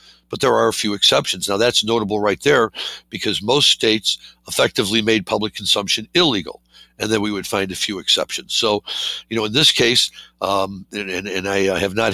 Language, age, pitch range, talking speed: English, 60-79, 100-110 Hz, 195 wpm